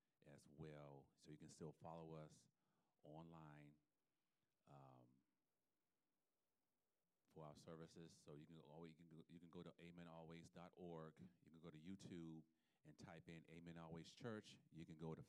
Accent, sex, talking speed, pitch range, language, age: American, male, 135 wpm, 75-85 Hz, English, 40-59